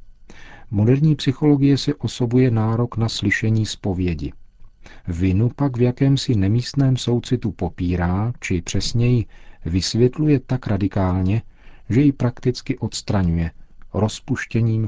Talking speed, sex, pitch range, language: 100 wpm, male, 95-110 Hz, Czech